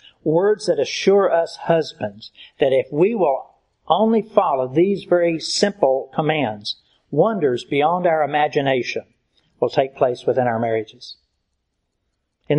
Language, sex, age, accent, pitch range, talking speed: English, male, 60-79, American, 120-170 Hz, 125 wpm